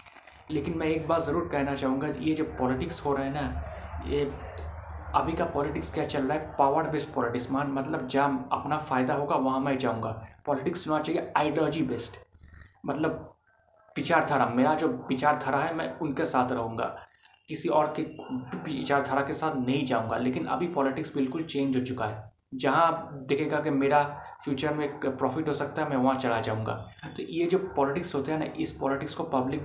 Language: Hindi